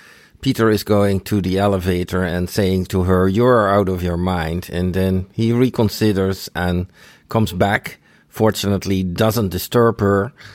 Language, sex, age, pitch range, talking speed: English, male, 50-69, 95-110 Hz, 150 wpm